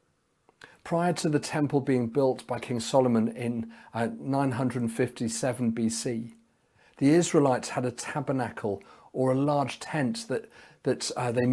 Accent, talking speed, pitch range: British, 135 wpm, 125-155 Hz